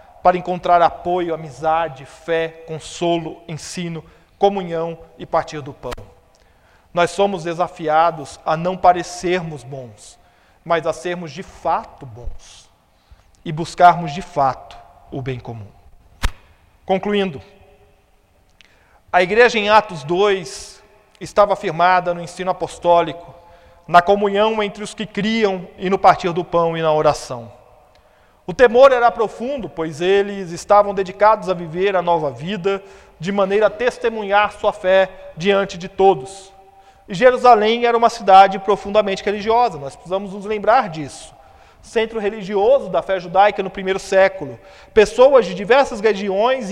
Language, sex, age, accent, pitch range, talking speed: Portuguese, male, 40-59, Brazilian, 170-215 Hz, 130 wpm